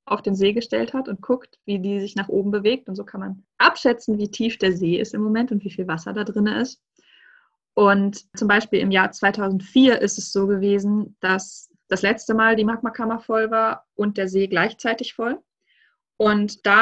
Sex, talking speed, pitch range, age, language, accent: female, 205 wpm, 195-230 Hz, 20-39, German, German